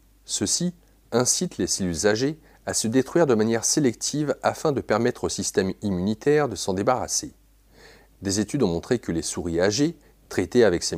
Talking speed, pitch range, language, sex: 170 wpm, 95-130 Hz, French, male